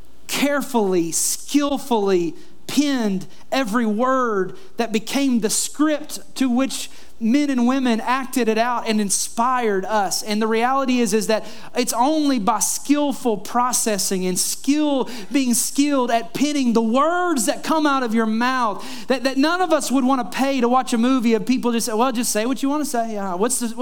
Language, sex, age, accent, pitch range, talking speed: English, male, 30-49, American, 215-280 Hz, 185 wpm